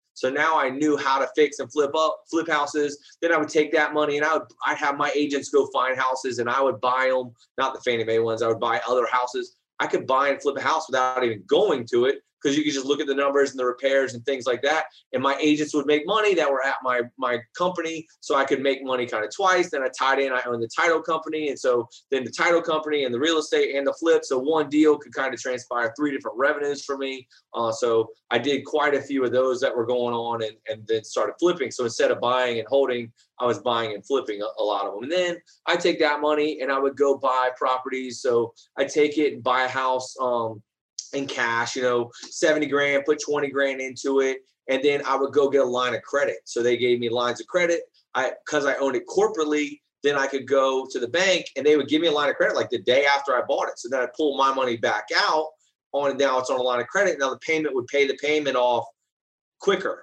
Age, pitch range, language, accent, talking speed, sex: 20-39, 125-150 Hz, English, American, 260 wpm, male